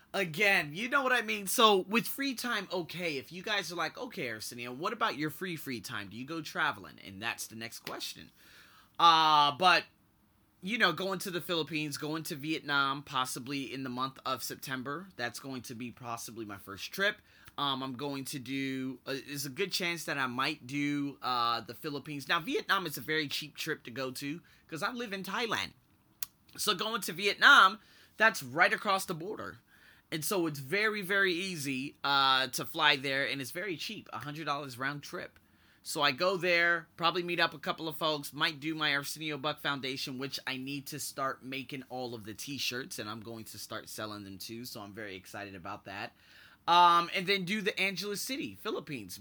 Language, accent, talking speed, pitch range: English, American, 200 wpm, 125-175 Hz